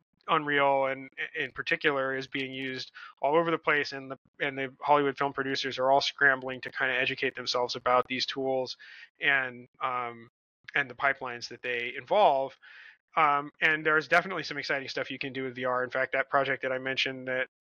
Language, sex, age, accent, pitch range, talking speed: English, male, 30-49, American, 130-150 Hz, 195 wpm